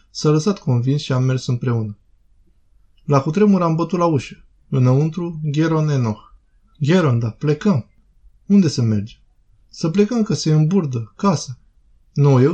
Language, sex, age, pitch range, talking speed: Romanian, male, 20-39, 115-155 Hz, 145 wpm